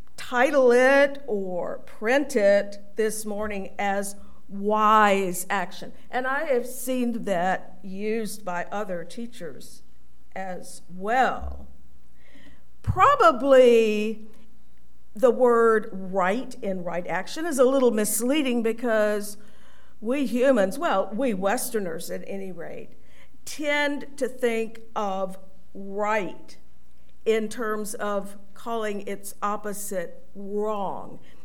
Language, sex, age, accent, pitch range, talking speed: English, female, 50-69, American, 190-245 Hz, 100 wpm